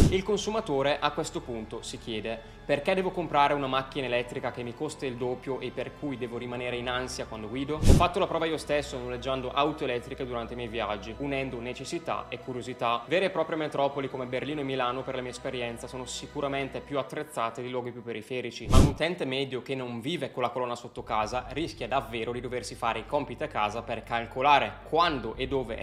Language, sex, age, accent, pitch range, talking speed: Italian, male, 20-39, native, 115-140 Hz, 210 wpm